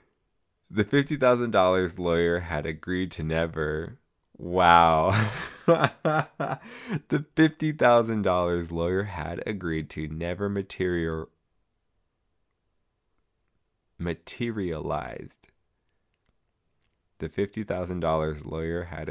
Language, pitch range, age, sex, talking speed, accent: English, 80-100 Hz, 20-39, male, 65 wpm, American